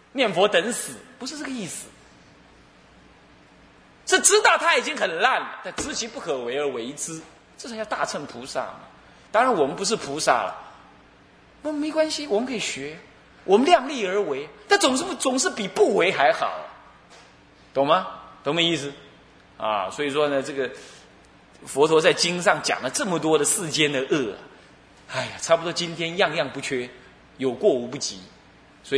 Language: Chinese